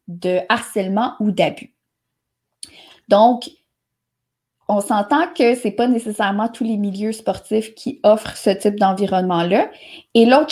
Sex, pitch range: female, 195-250 Hz